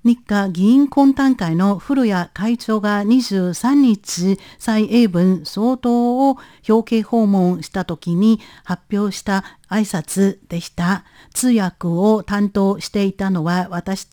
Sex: female